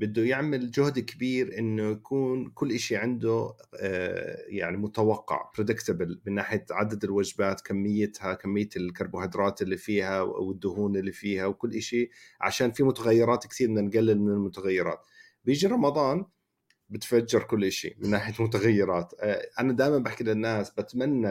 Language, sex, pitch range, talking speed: Arabic, male, 105-130 Hz, 130 wpm